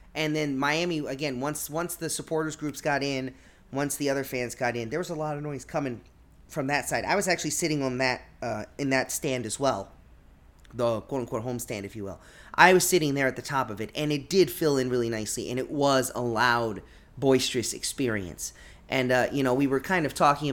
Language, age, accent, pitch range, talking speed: English, 30-49, American, 120-155 Hz, 225 wpm